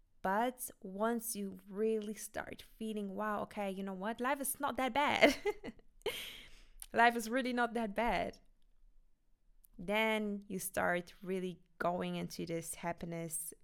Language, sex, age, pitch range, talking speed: German, female, 20-39, 170-205 Hz, 130 wpm